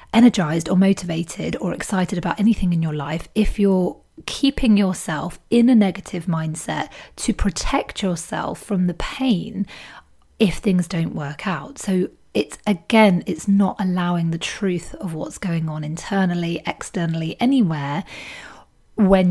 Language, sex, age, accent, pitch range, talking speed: English, female, 30-49, British, 170-210 Hz, 140 wpm